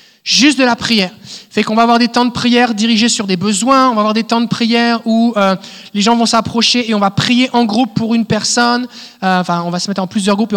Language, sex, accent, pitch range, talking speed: French, male, French, 195-235 Hz, 275 wpm